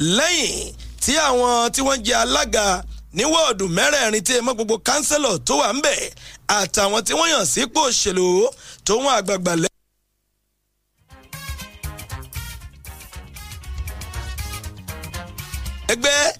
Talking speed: 90 wpm